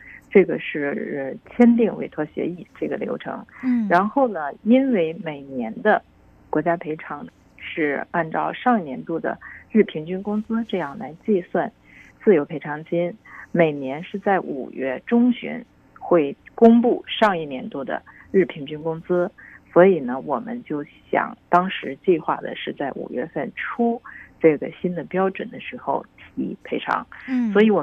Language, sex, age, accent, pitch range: Chinese, female, 50-69, native, 155-230 Hz